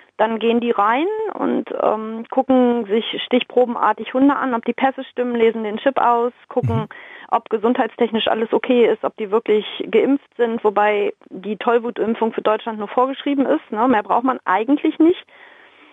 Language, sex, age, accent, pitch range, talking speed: German, female, 30-49, German, 220-260 Hz, 160 wpm